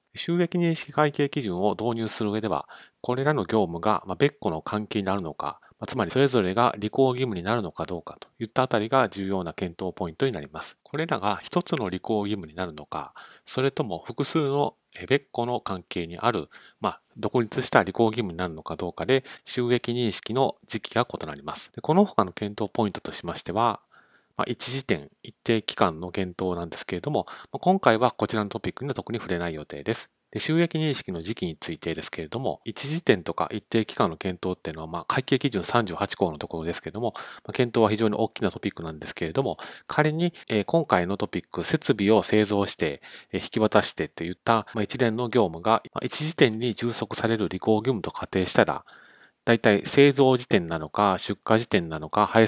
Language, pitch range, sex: Japanese, 95-125 Hz, male